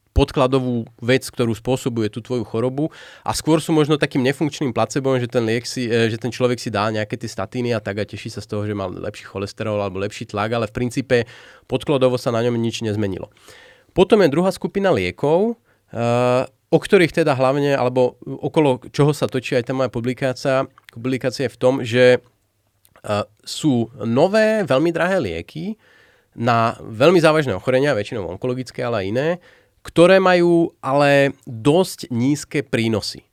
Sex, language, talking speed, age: male, Slovak, 165 wpm, 30-49